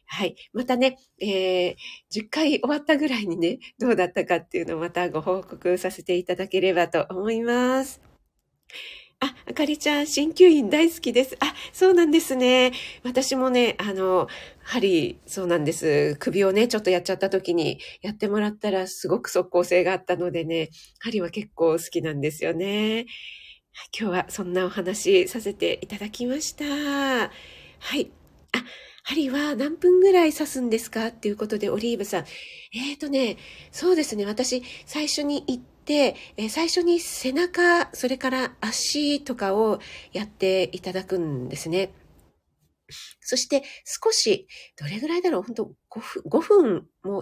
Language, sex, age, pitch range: Japanese, female, 40-59, 185-275 Hz